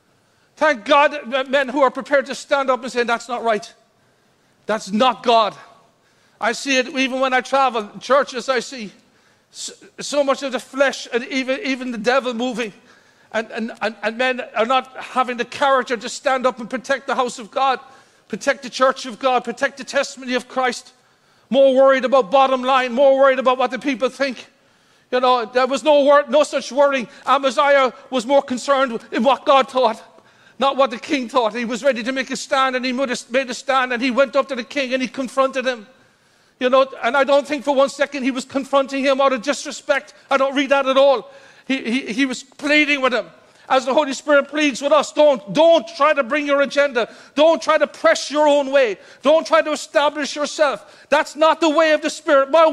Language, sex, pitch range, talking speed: English, male, 255-285 Hz, 215 wpm